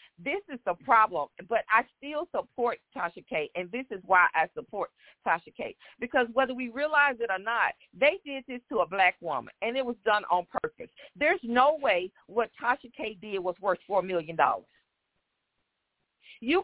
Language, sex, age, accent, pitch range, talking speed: English, female, 50-69, American, 225-295 Hz, 180 wpm